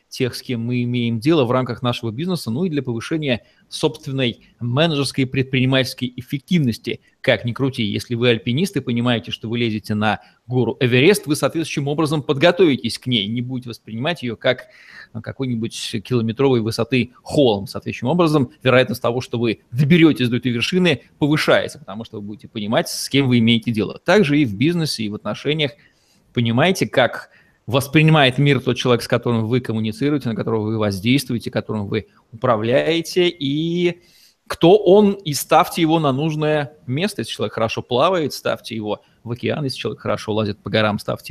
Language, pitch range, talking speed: Russian, 115-150 Hz, 170 wpm